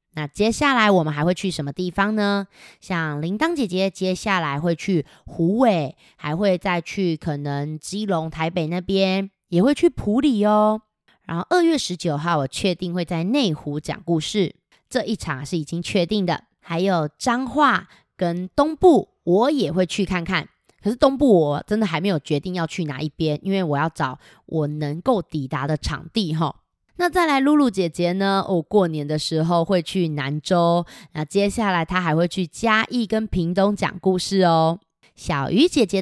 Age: 20-39